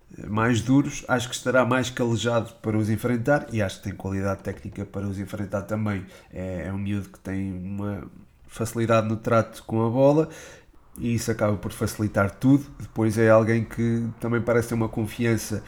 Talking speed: 180 wpm